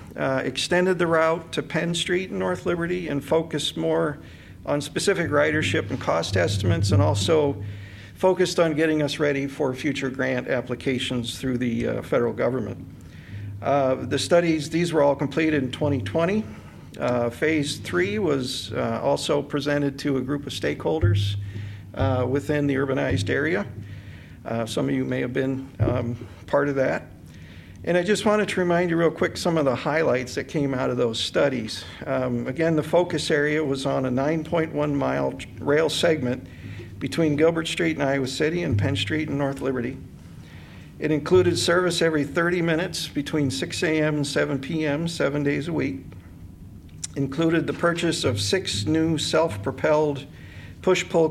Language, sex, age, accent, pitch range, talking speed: English, male, 50-69, American, 120-160 Hz, 165 wpm